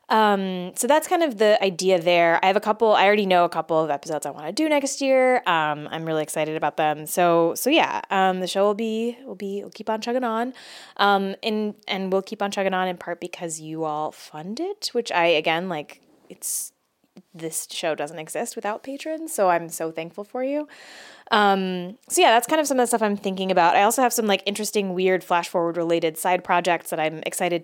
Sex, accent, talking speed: female, American, 230 wpm